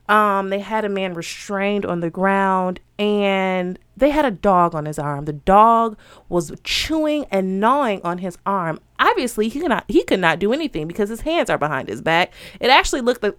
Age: 20-39